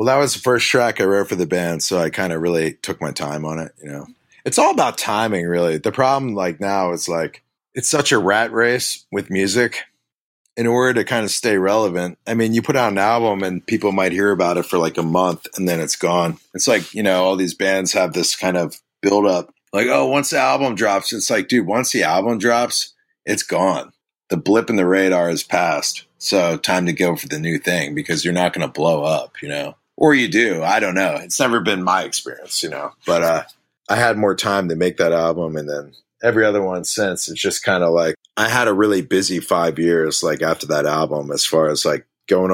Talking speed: 235 wpm